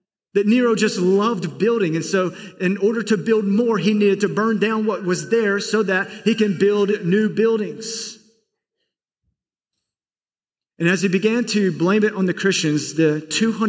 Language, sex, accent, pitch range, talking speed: English, male, American, 205-250 Hz, 165 wpm